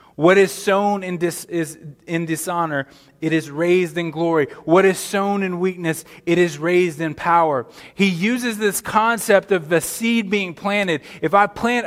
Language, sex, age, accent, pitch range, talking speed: English, male, 20-39, American, 190-235 Hz, 175 wpm